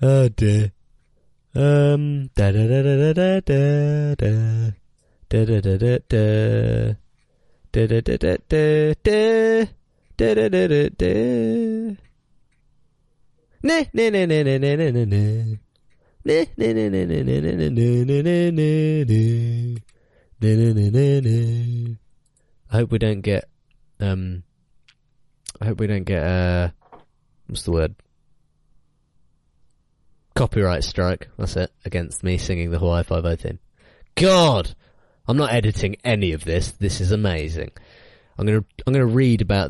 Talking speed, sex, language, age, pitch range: 60 wpm, male, English, 20-39, 95-135 Hz